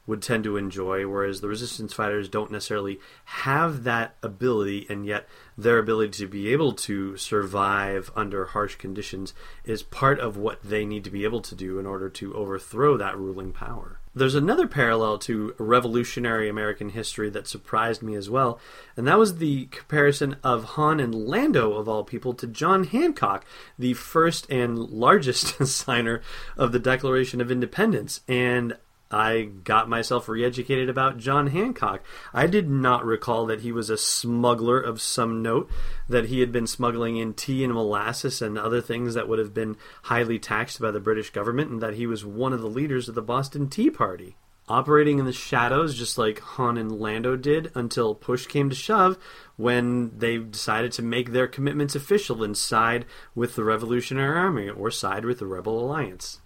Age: 30-49